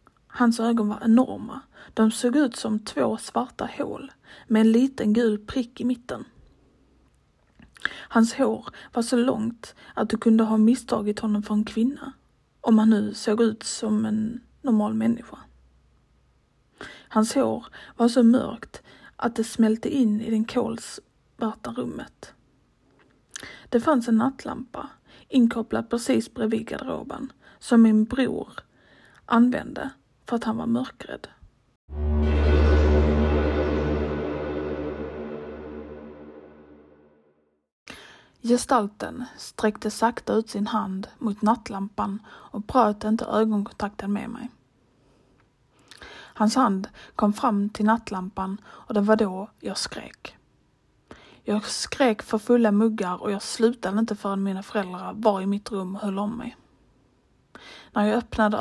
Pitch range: 200-235 Hz